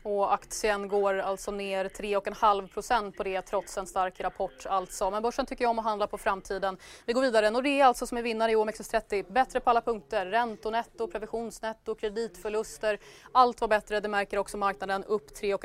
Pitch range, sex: 200-250 Hz, female